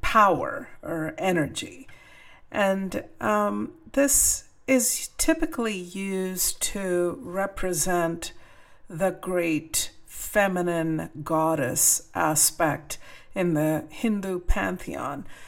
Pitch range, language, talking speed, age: 160-195 Hz, English, 80 wpm, 50-69